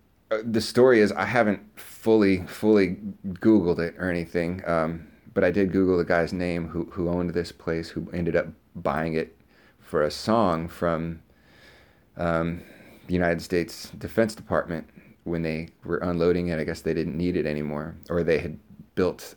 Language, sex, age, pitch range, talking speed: English, male, 30-49, 80-90 Hz, 170 wpm